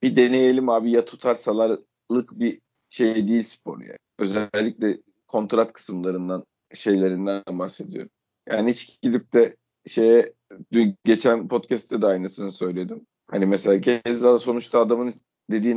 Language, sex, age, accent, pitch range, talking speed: Turkish, male, 50-69, native, 105-130 Hz, 125 wpm